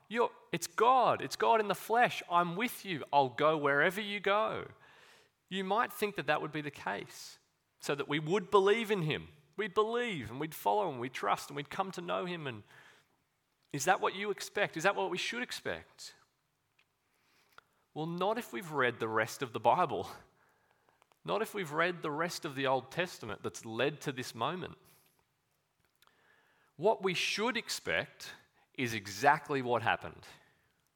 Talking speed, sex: 175 wpm, male